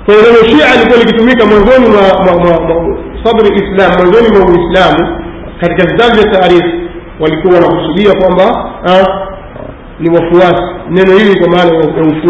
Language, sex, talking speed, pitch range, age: Swahili, male, 130 wpm, 170-200 Hz, 50-69